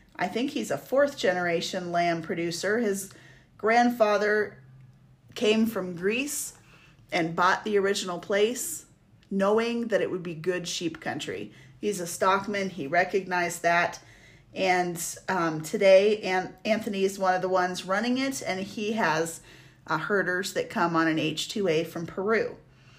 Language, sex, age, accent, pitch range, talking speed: English, female, 30-49, American, 175-215 Hz, 145 wpm